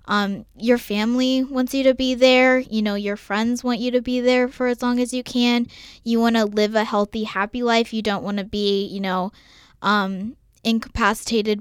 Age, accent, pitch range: 20-39, American, 205-240 Hz